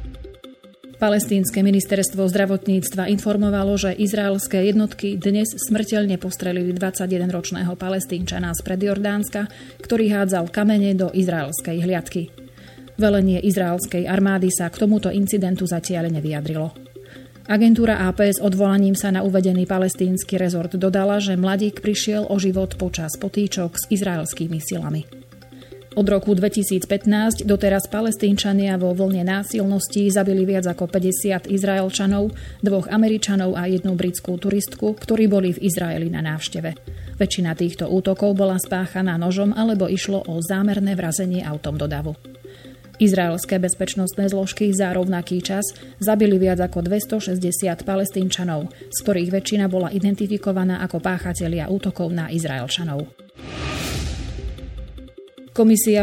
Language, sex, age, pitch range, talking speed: Slovak, female, 30-49, 180-205 Hz, 115 wpm